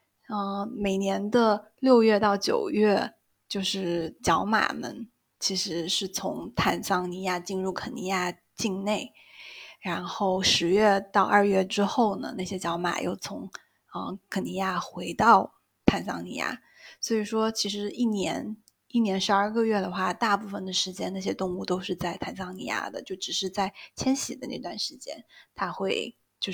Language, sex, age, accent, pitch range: Chinese, female, 20-39, native, 185-215 Hz